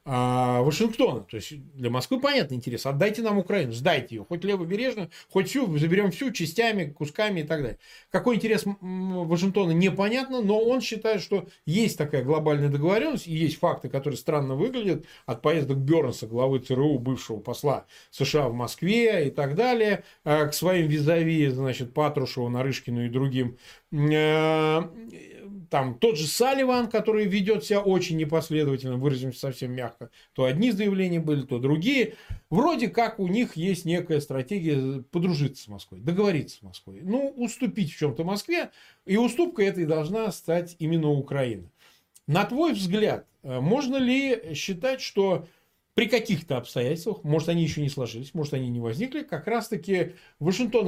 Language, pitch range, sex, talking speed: Russian, 135-205 Hz, male, 145 wpm